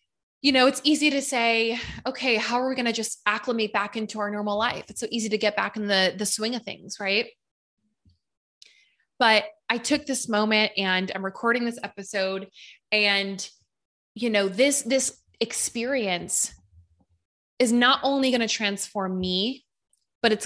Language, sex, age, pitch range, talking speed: English, female, 20-39, 195-245 Hz, 165 wpm